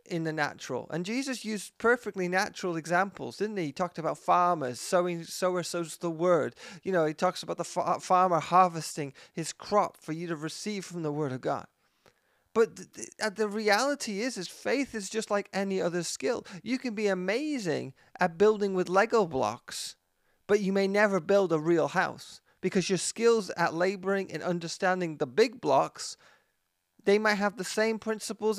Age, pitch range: 30-49, 165-205 Hz